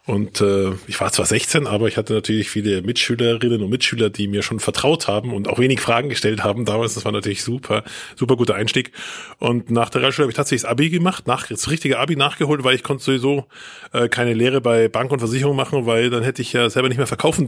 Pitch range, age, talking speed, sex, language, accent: 110-140 Hz, 20-39, 235 wpm, male, German, German